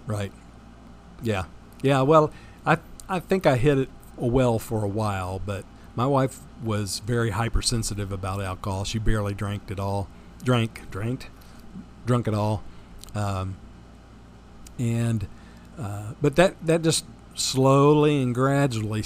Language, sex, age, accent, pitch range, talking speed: English, male, 50-69, American, 100-125 Hz, 130 wpm